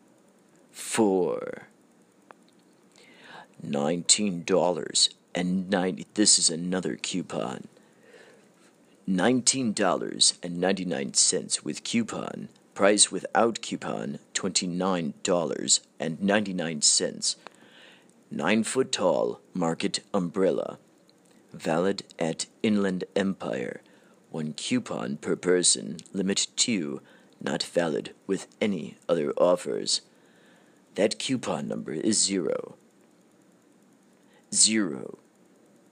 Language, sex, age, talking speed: English, male, 40-59, 90 wpm